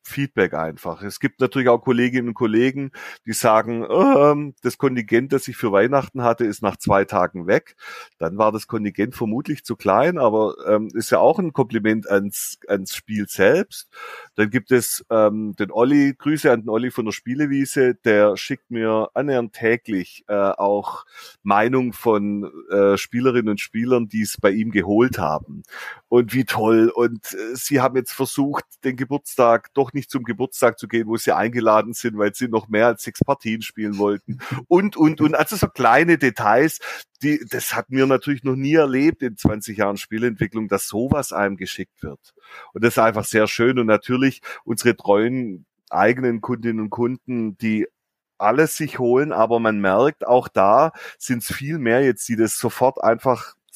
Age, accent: 30-49, German